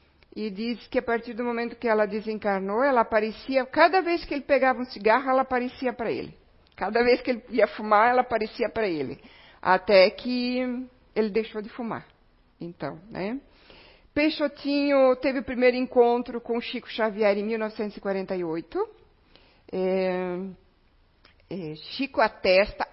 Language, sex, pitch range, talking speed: Portuguese, female, 195-250 Hz, 140 wpm